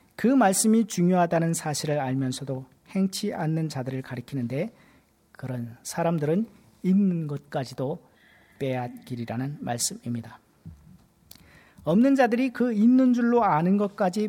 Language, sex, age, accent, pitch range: Korean, male, 40-59, native, 135-195 Hz